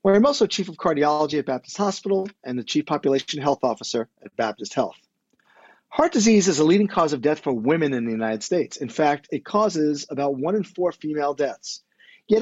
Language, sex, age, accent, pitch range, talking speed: English, male, 40-59, American, 135-190 Hz, 210 wpm